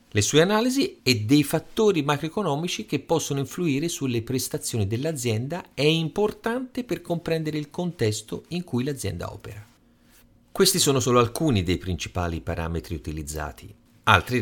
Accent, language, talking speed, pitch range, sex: native, Italian, 135 wpm, 95-155 Hz, male